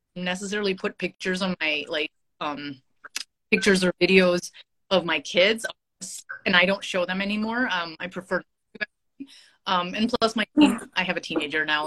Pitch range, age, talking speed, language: 180-245 Hz, 30-49, 165 wpm, English